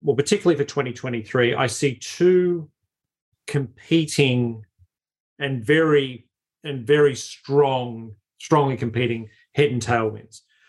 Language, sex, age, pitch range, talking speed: English, male, 40-59, 120-150 Hz, 100 wpm